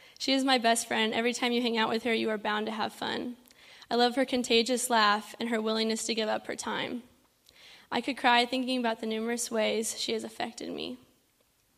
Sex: female